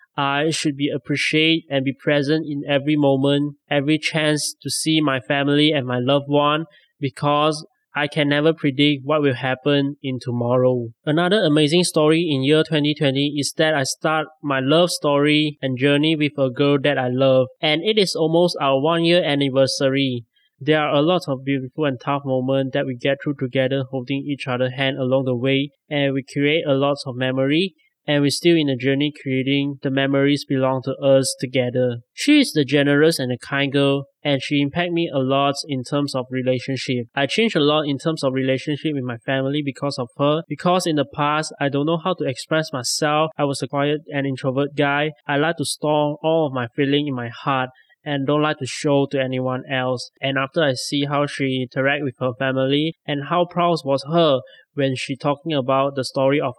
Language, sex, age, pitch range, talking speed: English, male, 20-39, 135-150 Hz, 205 wpm